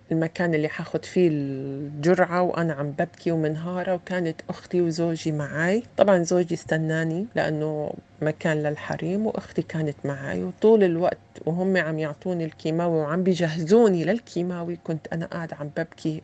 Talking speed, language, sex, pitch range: 135 wpm, Arabic, female, 160-185 Hz